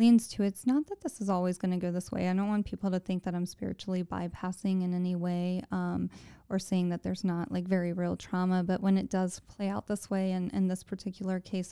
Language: English